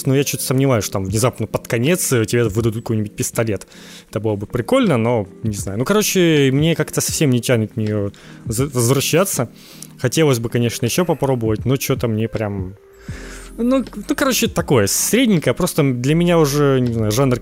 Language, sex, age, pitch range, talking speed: Ukrainian, male, 20-39, 115-150 Hz, 170 wpm